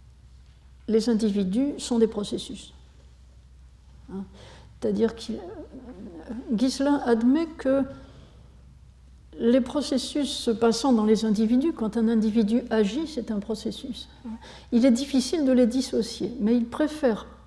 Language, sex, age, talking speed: French, female, 60-79, 115 wpm